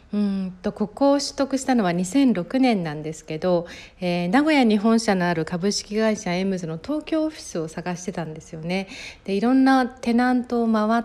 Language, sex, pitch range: Japanese, female, 175-235 Hz